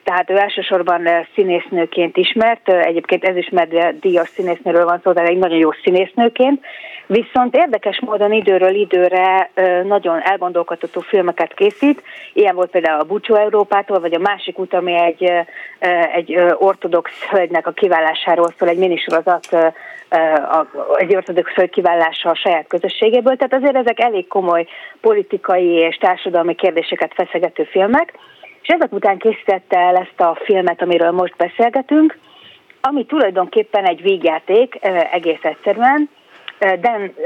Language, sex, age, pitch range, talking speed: Hungarian, female, 30-49, 170-220 Hz, 135 wpm